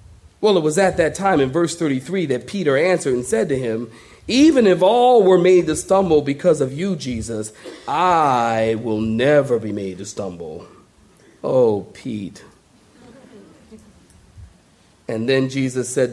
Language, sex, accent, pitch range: English, male, American, 120-180 Hz